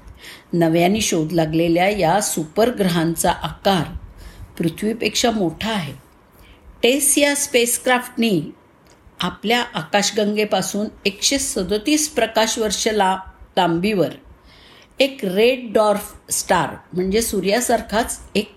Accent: native